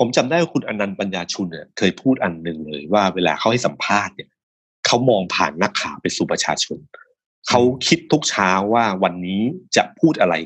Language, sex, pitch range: Thai, male, 95-150 Hz